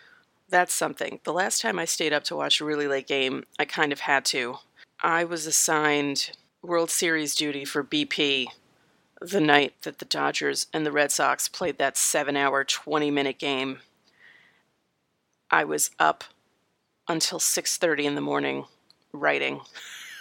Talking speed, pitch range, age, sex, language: 150 wpm, 145-180 Hz, 30-49, female, English